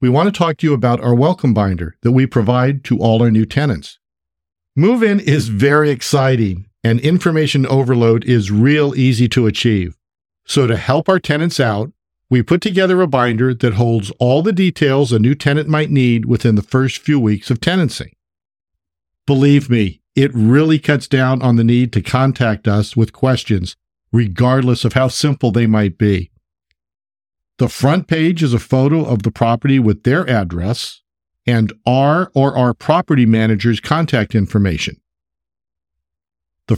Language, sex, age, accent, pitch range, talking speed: English, male, 50-69, American, 110-140 Hz, 165 wpm